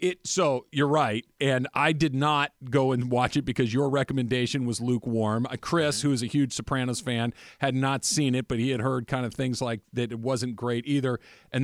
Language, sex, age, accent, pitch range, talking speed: English, male, 40-59, American, 120-165 Hz, 210 wpm